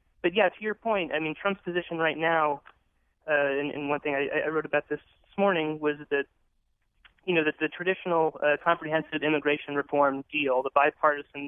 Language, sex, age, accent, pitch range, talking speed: English, male, 20-39, American, 135-150 Hz, 190 wpm